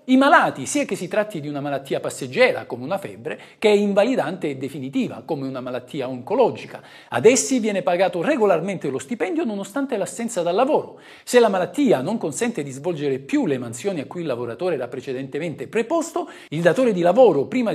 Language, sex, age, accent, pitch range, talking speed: Italian, male, 50-69, native, 150-240 Hz, 185 wpm